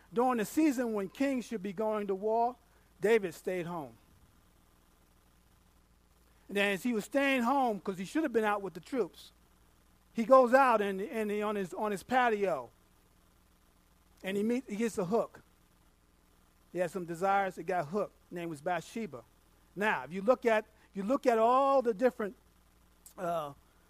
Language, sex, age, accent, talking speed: English, male, 40-59, American, 175 wpm